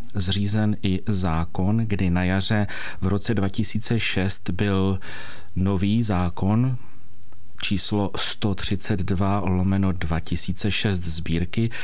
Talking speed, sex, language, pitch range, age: 85 wpm, male, Czech, 95-120 Hz, 40-59